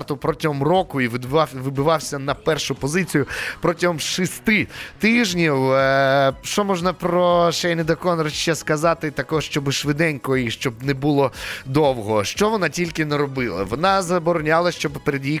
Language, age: Ukrainian, 20-39